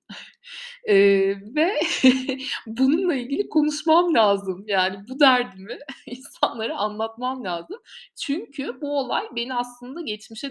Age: 60-79